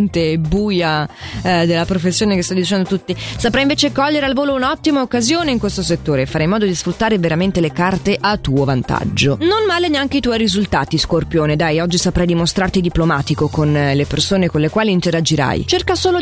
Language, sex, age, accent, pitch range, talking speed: Italian, female, 20-39, native, 160-240 Hz, 190 wpm